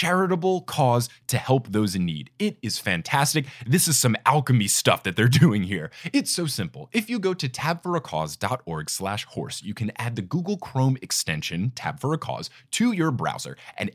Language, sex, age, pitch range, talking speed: English, male, 20-39, 105-180 Hz, 180 wpm